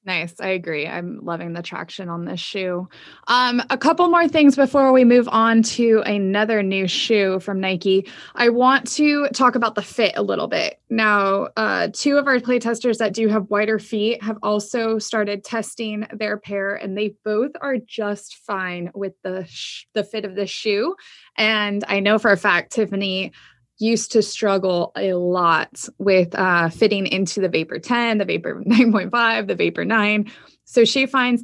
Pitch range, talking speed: 195-240 Hz, 180 wpm